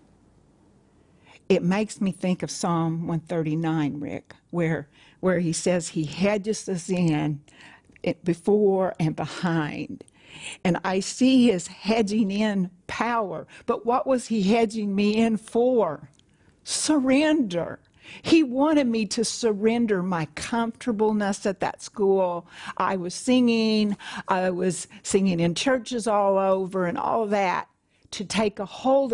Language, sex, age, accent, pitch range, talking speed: English, female, 60-79, American, 165-220 Hz, 130 wpm